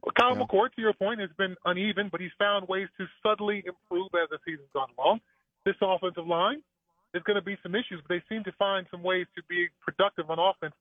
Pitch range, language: 160-200 Hz, English